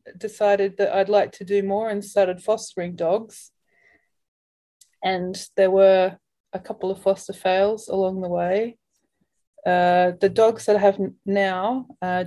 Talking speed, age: 145 wpm, 30-49